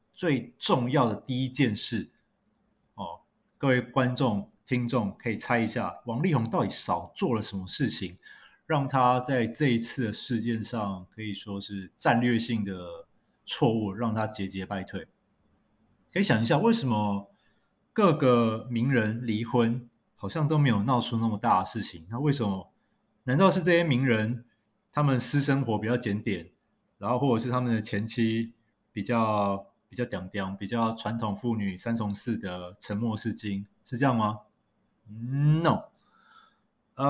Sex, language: male, Chinese